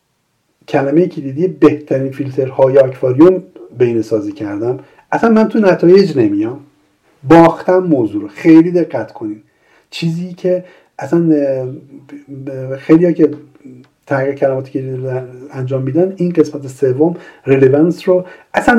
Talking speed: 115 wpm